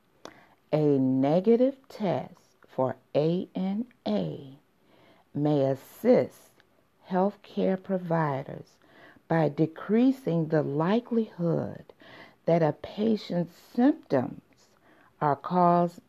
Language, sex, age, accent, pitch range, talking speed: English, female, 50-69, American, 150-210 Hz, 75 wpm